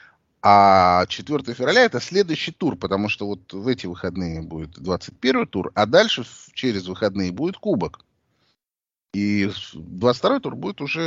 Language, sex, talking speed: Russian, male, 140 wpm